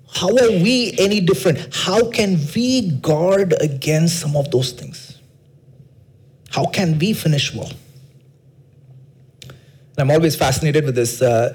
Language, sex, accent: English, male, Indian